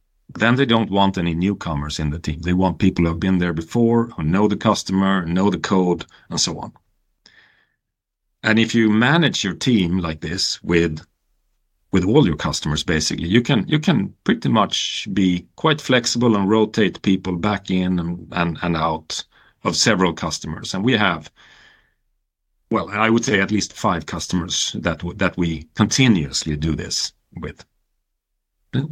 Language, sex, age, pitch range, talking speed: English, male, 40-59, 85-110 Hz, 170 wpm